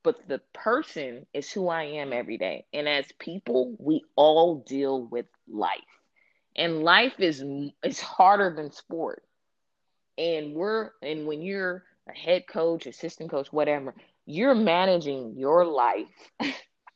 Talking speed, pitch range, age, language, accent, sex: 140 wpm, 140-175 Hz, 20-39, English, American, female